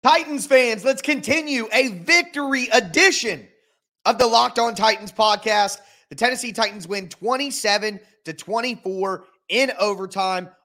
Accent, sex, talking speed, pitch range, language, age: American, male, 125 wpm, 165-225 Hz, English, 30-49